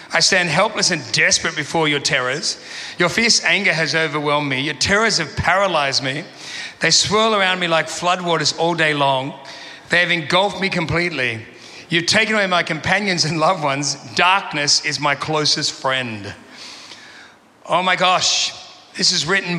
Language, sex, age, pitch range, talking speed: English, male, 40-59, 145-180 Hz, 160 wpm